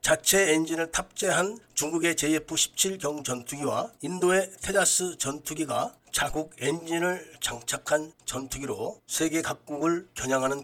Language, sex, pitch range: Korean, male, 145-185 Hz